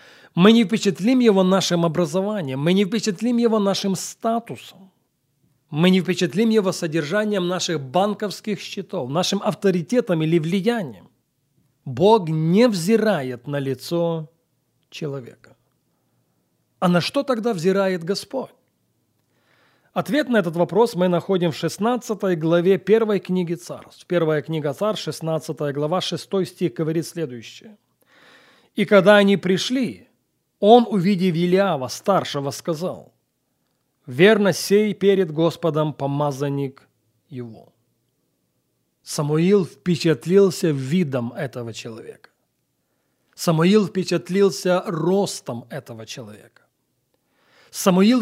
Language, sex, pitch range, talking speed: Russian, male, 150-200 Hz, 105 wpm